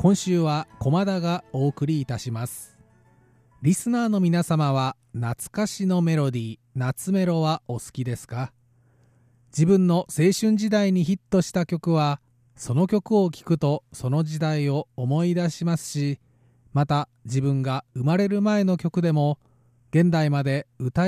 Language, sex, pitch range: Japanese, male, 130-175 Hz